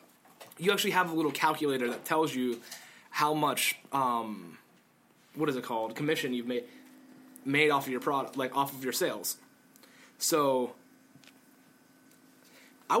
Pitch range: 150-225 Hz